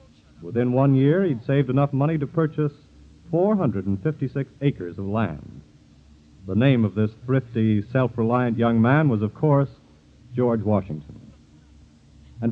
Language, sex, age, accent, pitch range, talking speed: English, male, 50-69, American, 110-150 Hz, 130 wpm